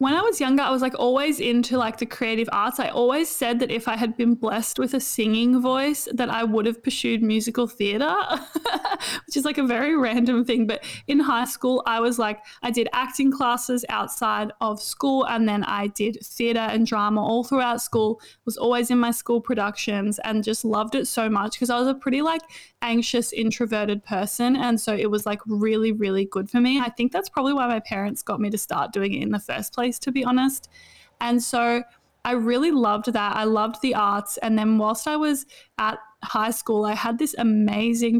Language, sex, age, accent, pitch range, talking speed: English, female, 20-39, Australian, 215-250 Hz, 215 wpm